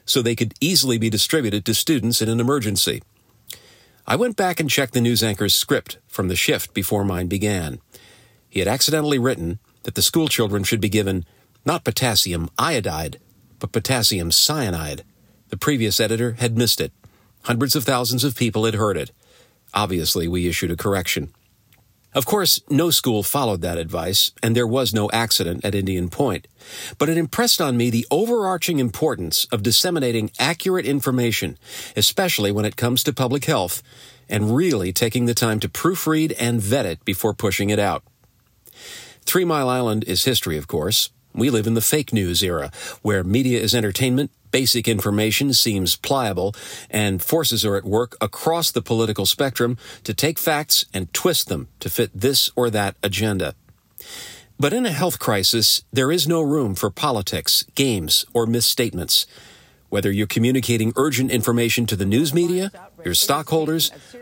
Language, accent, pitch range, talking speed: English, American, 105-135 Hz, 165 wpm